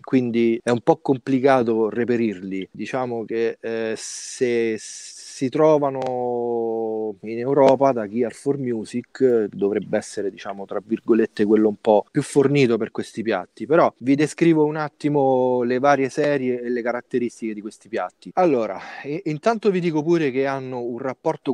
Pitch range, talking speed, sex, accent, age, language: 110-135 Hz, 150 wpm, male, native, 30-49, Italian